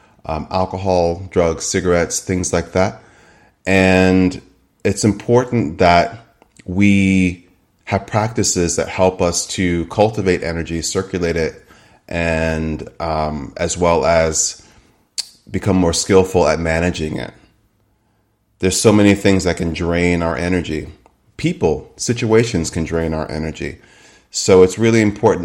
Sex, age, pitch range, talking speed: male, 30-49, 85-100 Hz, 125 wpm